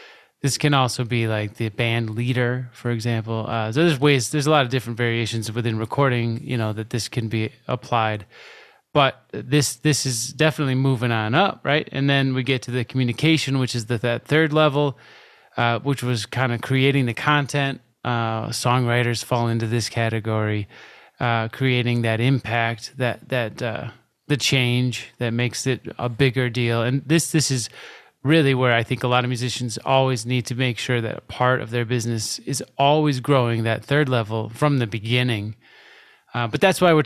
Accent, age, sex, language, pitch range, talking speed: American, 20-39, male, English, 115-140 Hz, 190 wpm